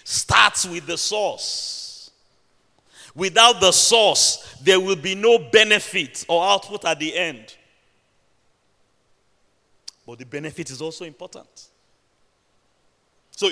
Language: English